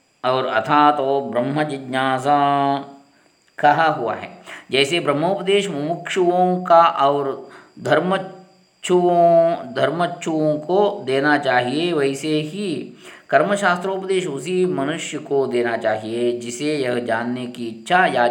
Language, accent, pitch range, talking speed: Kannada, native, 130-185 Hz, 100 wpm